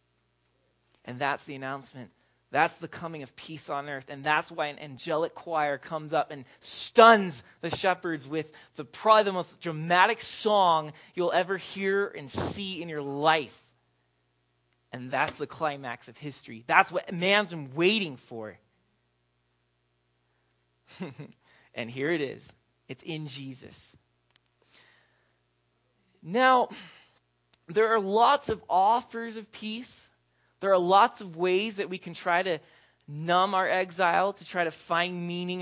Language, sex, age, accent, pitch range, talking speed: English, male, 30-49, American, 120-175 Hz, 140 wpm